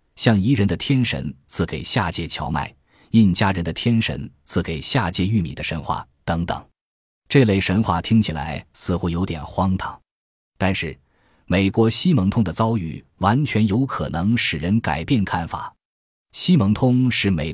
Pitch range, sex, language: 85-115 Hz, male, Chinese